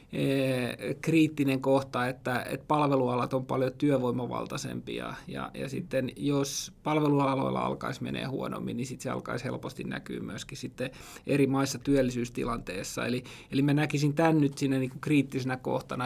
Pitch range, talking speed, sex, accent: 125-150 Hz, 140 wpm, male, native